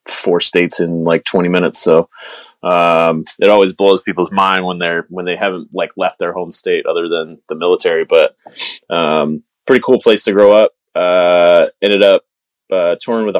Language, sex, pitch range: English, male, 90-115 Hz